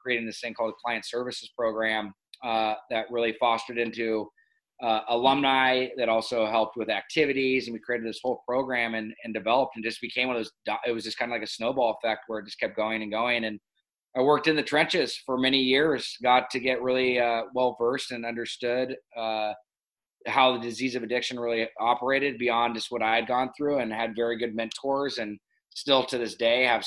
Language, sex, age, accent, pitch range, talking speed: English, male, 20-39, American, 115-130 Hz, 210 wpm